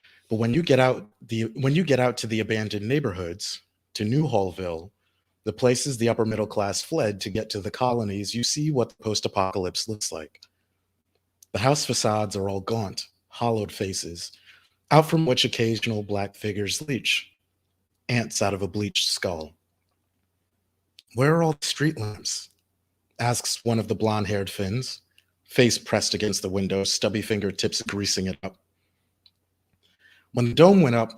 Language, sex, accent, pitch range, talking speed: English, male, American, 95-120 Hz, 150 wpm